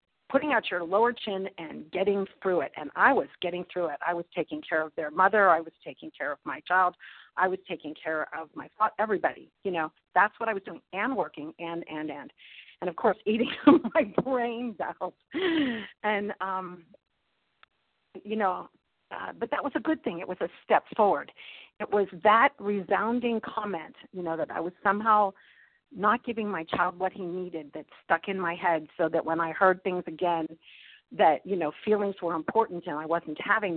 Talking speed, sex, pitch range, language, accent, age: 195 wpm, female, 170-215 Hz, English, American, 40-59